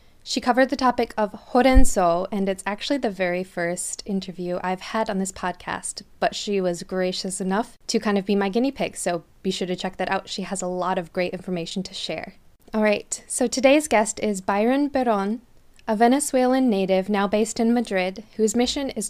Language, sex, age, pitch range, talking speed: English, female, 20-39, 195-235 Hz, 200 wpm